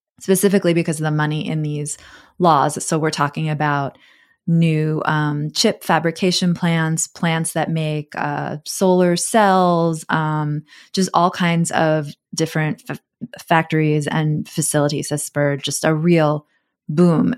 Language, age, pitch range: English, 20-39, 150-180 Hz